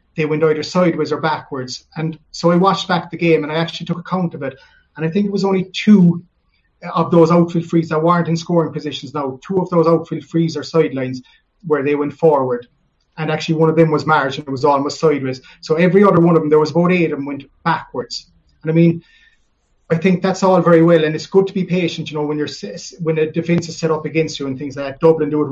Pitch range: 150-180 Hz